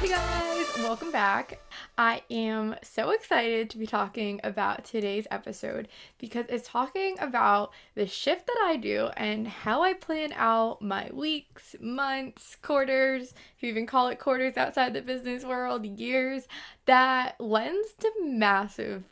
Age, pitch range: 10-29, 220-290 Hz